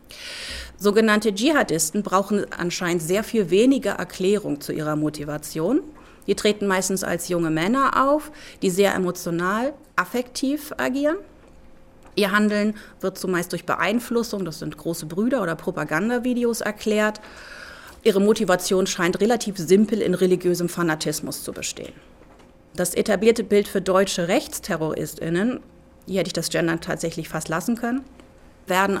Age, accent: 30-49, German